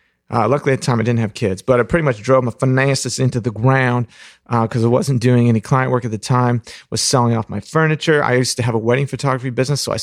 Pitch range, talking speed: 105-125 Hz, 270 wpm